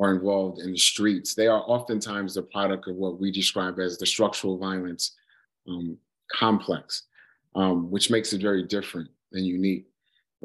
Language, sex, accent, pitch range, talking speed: English, male, American, 90-100 Hz, 160 wpm